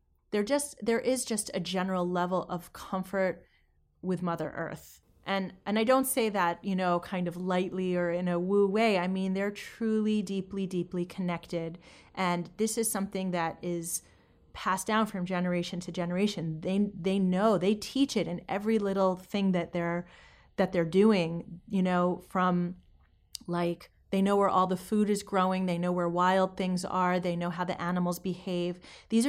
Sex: female